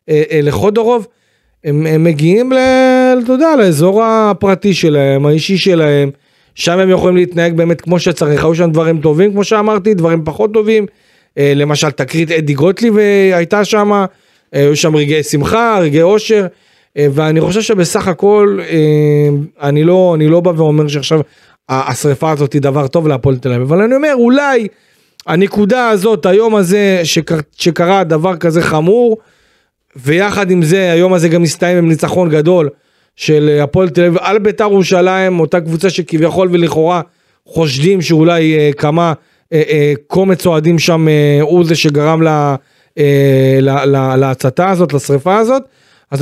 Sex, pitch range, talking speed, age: male, 150-195 Hz, 150 wpm, 40-59